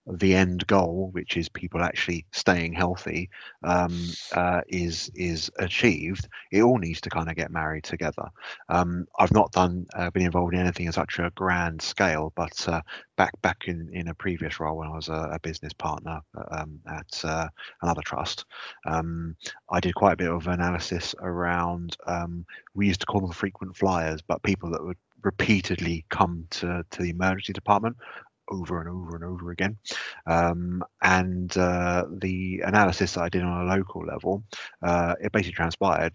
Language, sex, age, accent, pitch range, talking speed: English, male, 30-49, British, 85-90 Hz, 180 wpm